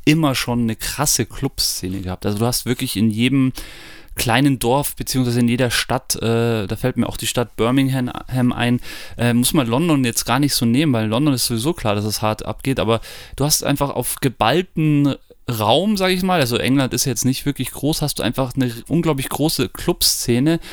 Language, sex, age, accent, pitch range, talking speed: German, male, 30-49, German, 115-145 Hz, 200 wpm